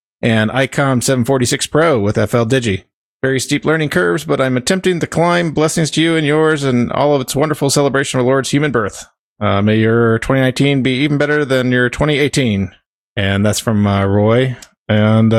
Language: English